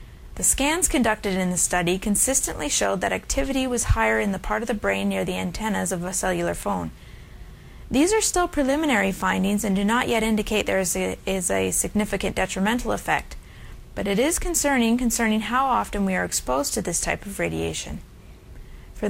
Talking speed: 185 wpm